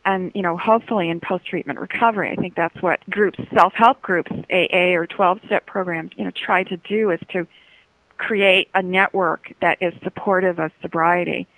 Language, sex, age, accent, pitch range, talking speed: English, female, 40-59, American, 175-205 Hz, 170 wpm